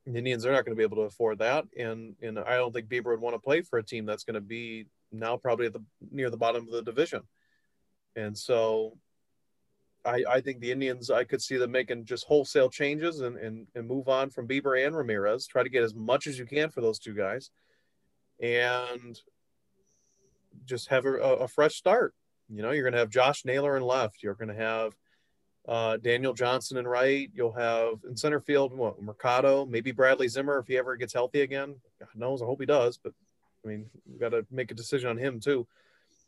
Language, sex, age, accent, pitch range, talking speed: English, male, 30-49, American, 115-135 Hz, 220 wpm